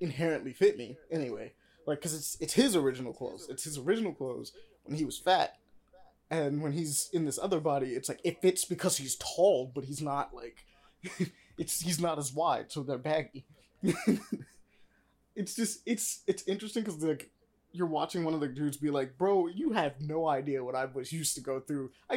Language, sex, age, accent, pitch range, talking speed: English, male, 20-39, American, 145-195 Hz, 200 wpm